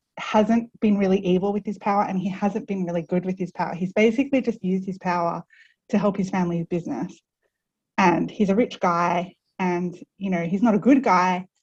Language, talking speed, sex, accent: English, 205 wpm, female, Australian